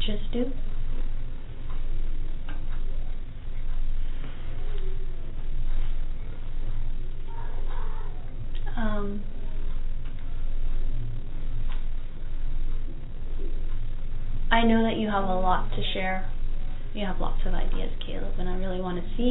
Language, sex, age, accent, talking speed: English, female, 20-39, American, 75 wpm